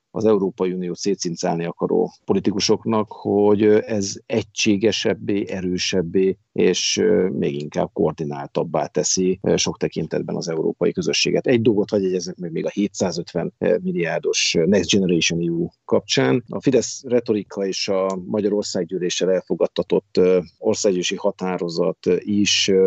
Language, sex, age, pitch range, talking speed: Hungarian, male, 50-69, 90-125 Hz, 110 wpm